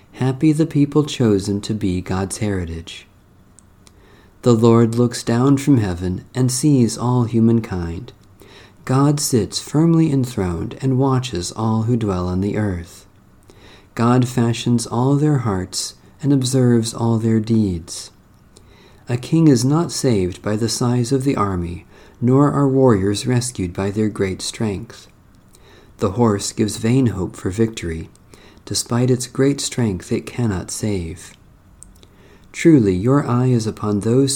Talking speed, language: 140 wpm, English